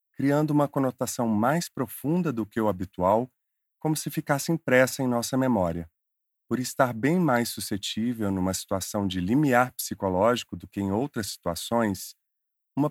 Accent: Brazilian